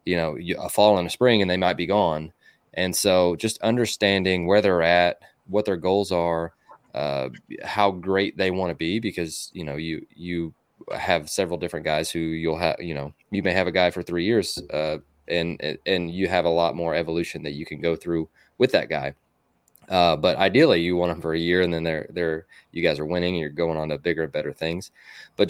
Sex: male